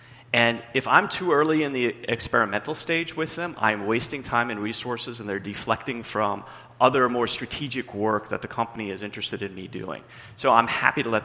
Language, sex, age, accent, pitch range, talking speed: English, male, 30-49, American, 110-130 Hz, 195 wpm